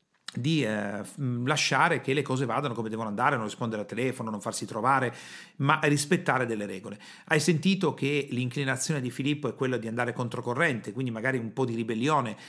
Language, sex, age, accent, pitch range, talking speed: Italian, male, 40-59, native, 120-150 Hz, 180 wpm